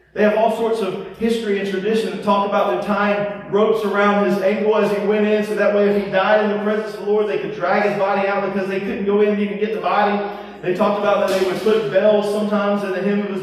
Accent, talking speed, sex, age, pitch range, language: American, 280 wpm, male, 40-59, 165-210 Hz, English